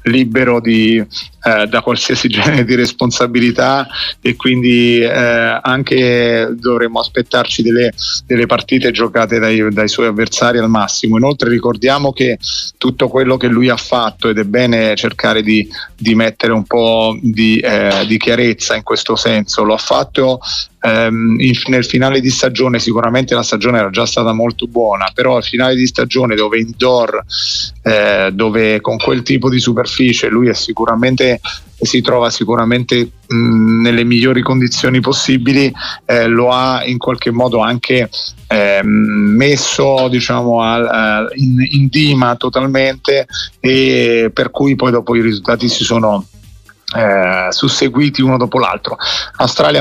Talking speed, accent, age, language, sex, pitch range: 145 wpm, native, 30-49, Italian, male, 115-130 Hz